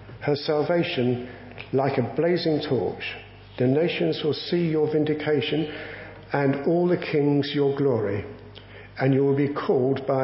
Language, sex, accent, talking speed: English, male, British, 140 wpm